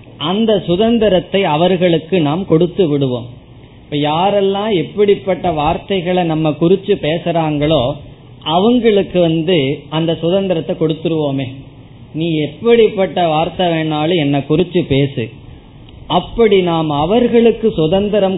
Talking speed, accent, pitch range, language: 95 wpm, native, 145-195 Hz, Tamil